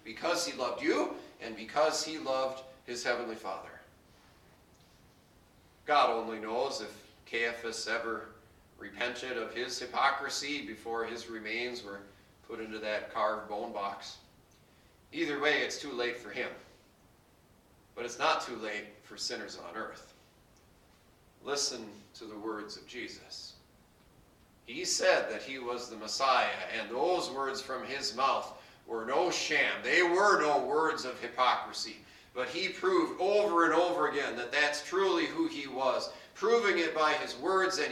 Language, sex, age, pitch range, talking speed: English, male, 40-59, 125-190 Hz, 150 wpm